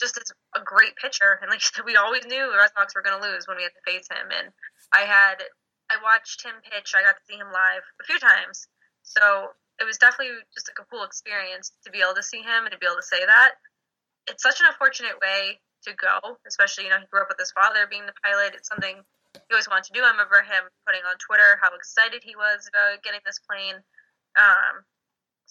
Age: 10-29